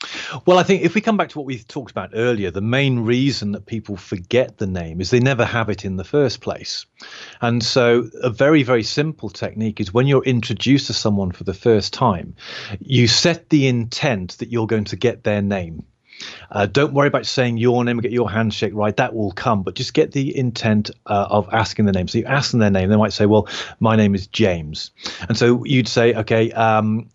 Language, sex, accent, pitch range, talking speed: English, male, British, 105-135 Hz, 225 wpm